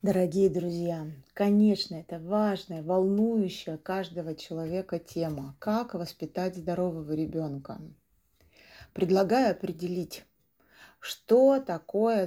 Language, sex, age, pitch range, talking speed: Russian, female, 30-49, 165-200 Hz, 85 wpm